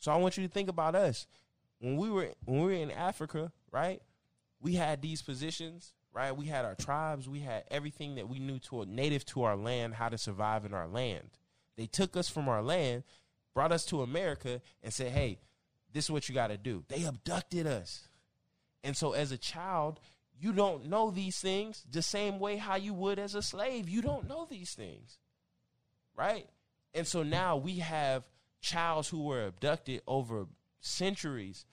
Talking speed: 195 wpm